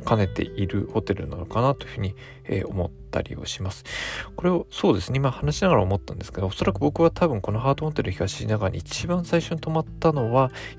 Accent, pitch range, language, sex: native, 95-135 Hz, Japanese, male